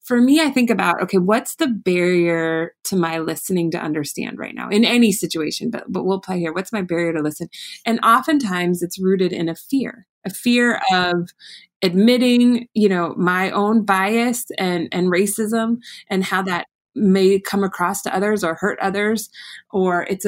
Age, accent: 20-39, American